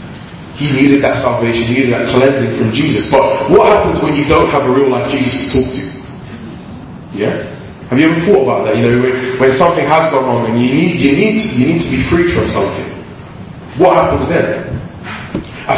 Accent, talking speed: British, 215 wpm